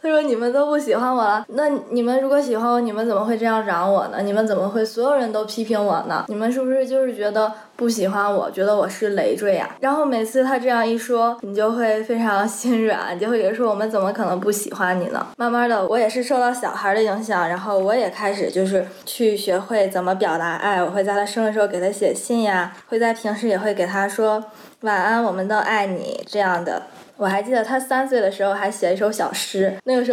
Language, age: Chinese, 20-39